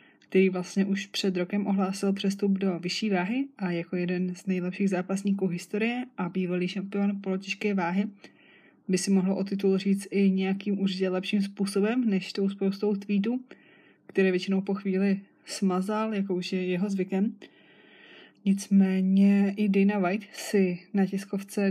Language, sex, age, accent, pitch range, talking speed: Czech, female, 20-39, native, 185-200 Hz, 145 wpm